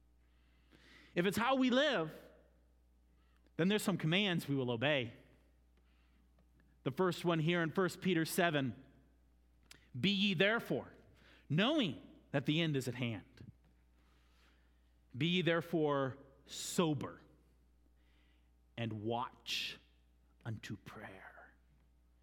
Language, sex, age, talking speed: English, male, 30-49, 105 wpm